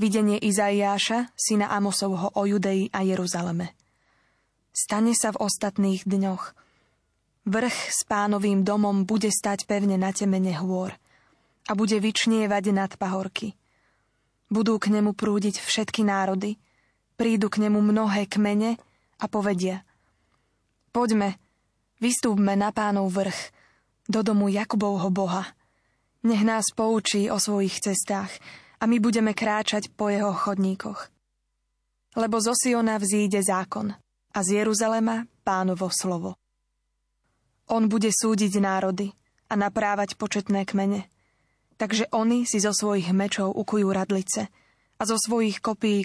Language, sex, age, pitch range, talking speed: Slovak, female, 20-39, 190-220 Hz, 120 wpm